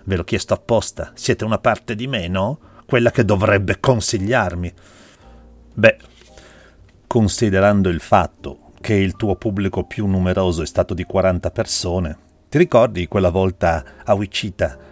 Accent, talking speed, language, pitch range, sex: native, 140 wpm, Italian, 85-105 Hz, male